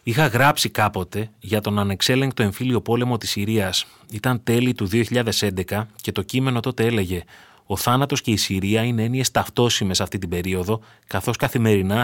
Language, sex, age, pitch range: Greek, male, 30-49, 105-135 Hz